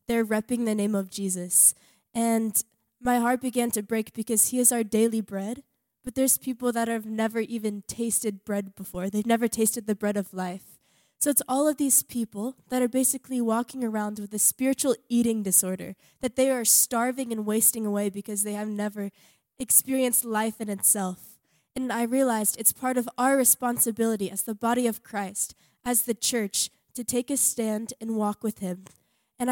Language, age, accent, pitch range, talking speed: English, 10-29, American, 215-250 Hz, 185 wpm